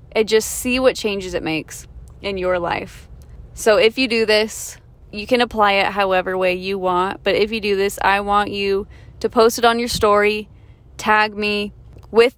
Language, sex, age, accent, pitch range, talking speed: English, female, 20-39, American, 190-230 Hz, 195 wpm